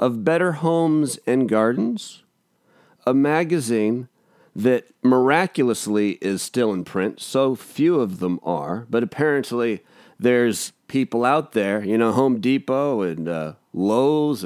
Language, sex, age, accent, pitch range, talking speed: English, male, 40-59, American, 115-150 Hz, 130 wpm